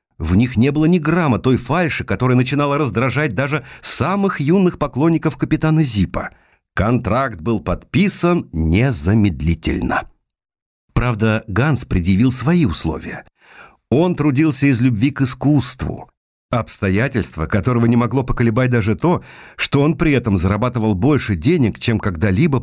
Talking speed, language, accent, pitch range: 125 wpm, Russian, native, 105-155 Hz